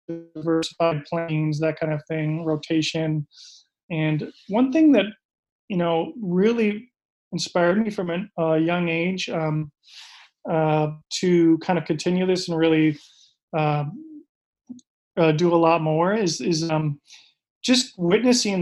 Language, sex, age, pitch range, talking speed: English, male, 30-49, 160-195 Hz, 130 wpm